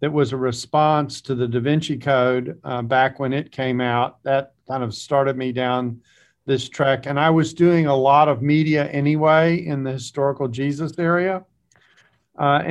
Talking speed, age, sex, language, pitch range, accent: 180 wpm, 50-69, male, English, 130-155 Hz, American